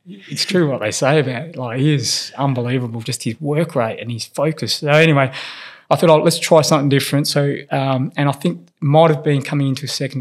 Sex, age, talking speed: male, 20-39, 230 wpm